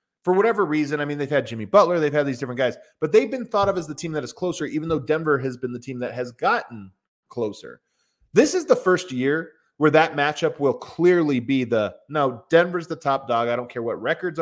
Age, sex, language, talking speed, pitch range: 30-49, male, English, 240 wpm, 125-165 Hz